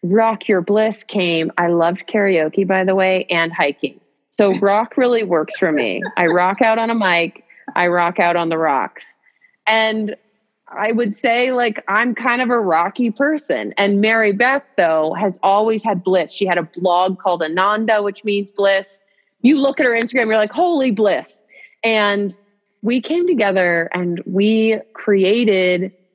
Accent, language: American, English